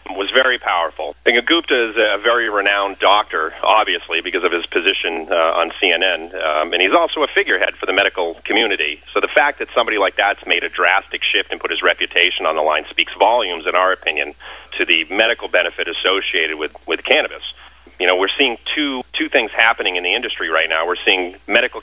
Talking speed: 205 wpm